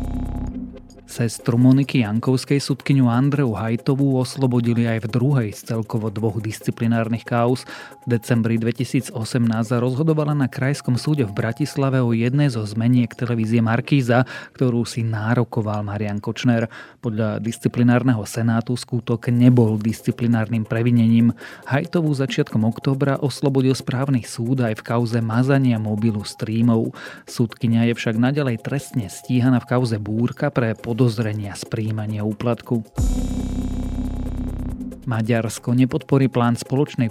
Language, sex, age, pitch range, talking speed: Slovak, male, 30-49, 115-130 Hz, 115 wpm